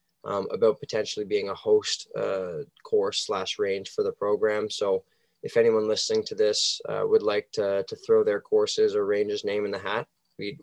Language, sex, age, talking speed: English, male, 20-39, 190 wpm